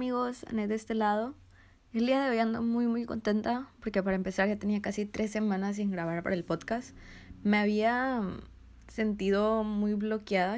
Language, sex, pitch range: Spanish, female, 180-210 Hz